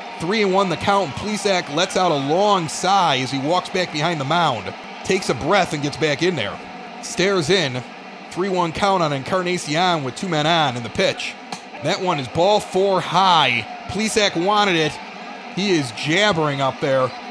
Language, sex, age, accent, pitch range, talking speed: English, male, 30-49, American, 165-205 Hz, 175 wpm